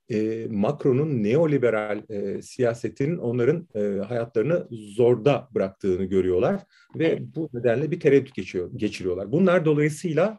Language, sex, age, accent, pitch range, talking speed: Turkish, male, 40-59, native, 110-145 Hz, 100 wpm